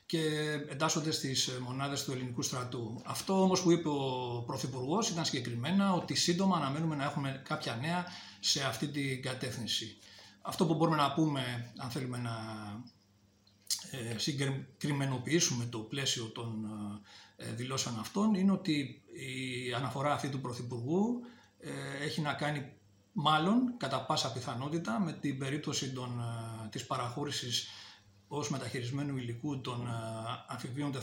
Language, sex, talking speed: Greek, male, 125 wpm